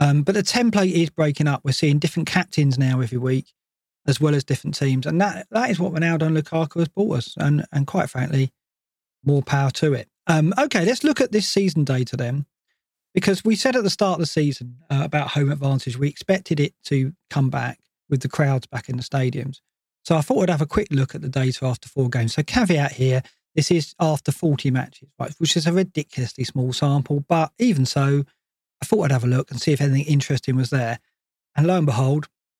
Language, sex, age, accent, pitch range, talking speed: English, male, 40-59, British, 135-165 Hz, 225 wpm